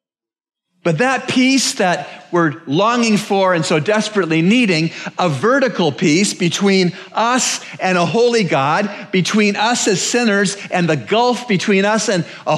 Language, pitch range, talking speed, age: English, 165-220 Hz, 150 wpm, 50-69